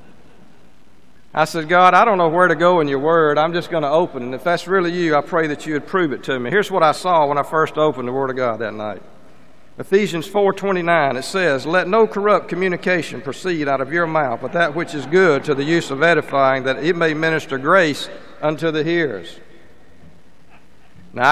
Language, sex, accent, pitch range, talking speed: English, male, American, 140-195 Hz, 215 wpm